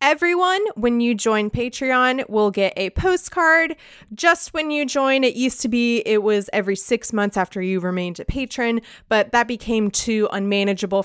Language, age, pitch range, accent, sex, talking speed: English, 20-39, 200-275 Hz, American, female, 175 wpm